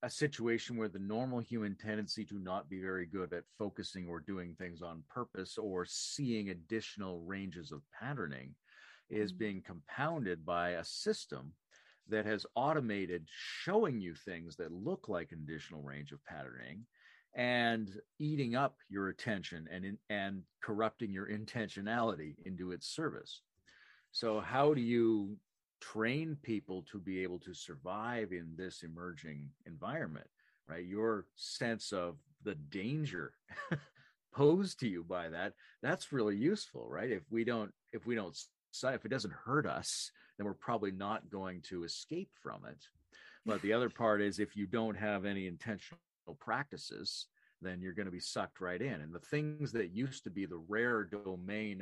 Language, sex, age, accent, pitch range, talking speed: English, male, 40-59, American, 90-115 Hz, 160 wpm